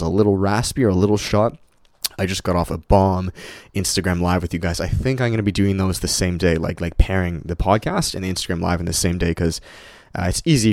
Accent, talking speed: American, 255 wpm